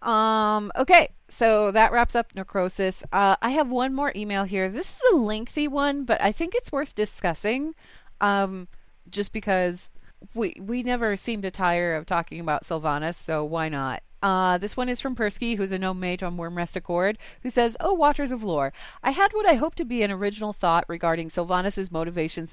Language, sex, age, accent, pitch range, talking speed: English, female, 30-49, American, 175-235 Hz, 195 wpm